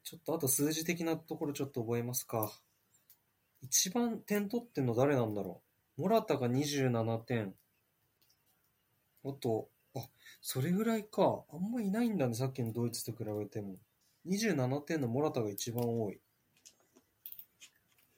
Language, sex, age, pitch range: Japanese, male, 20-39, 120-160 Hz